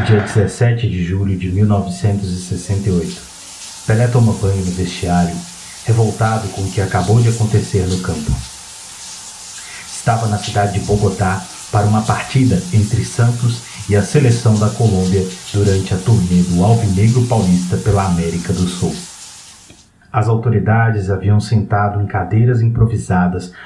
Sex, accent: male, Brazilian